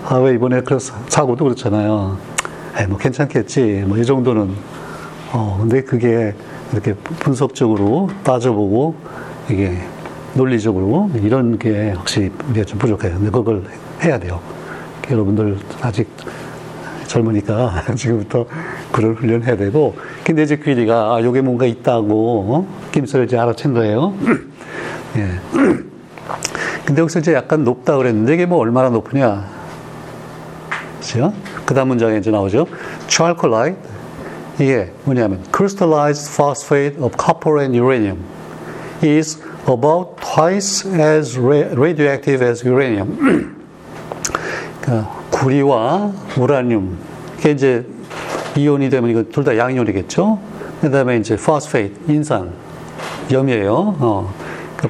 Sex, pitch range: male, 115-155 Hz